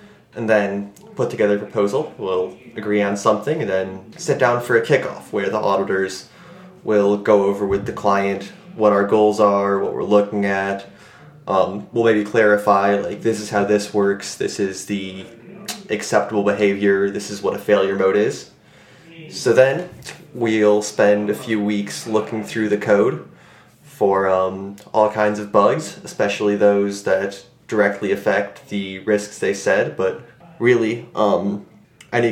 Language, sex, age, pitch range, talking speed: English, male, 20-39, 100-115 Hz, 160 wpm